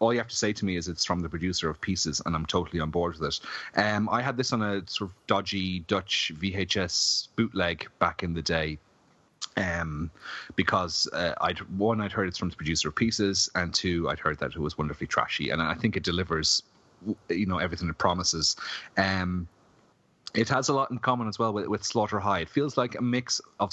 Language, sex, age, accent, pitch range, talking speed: English, male, 30-49, Irish, 80-105 Hz, 225 wpm